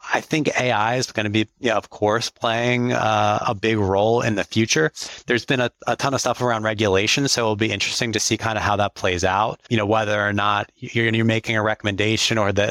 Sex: male